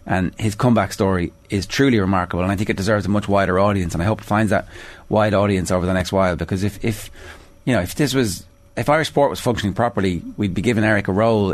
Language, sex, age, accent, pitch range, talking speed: English, male, 30-49, Irish, 90-110 Hz, 255 wpm